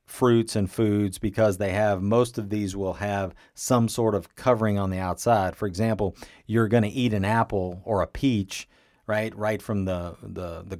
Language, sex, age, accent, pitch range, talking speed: English, male, 40-59, American, 95-115 Hz, 195 wpm